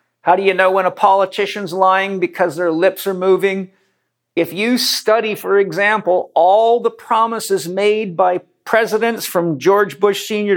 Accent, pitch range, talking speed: American, 175-205 Hz, 160 wpm